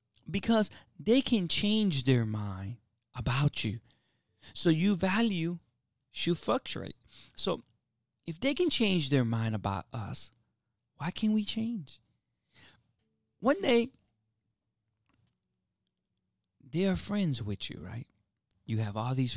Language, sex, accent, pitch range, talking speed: English, male, American, 115-185 Hz, 120 wpm